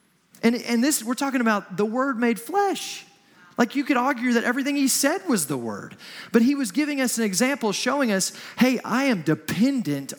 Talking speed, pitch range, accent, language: 200 wpm, 170-230 Hz, American, English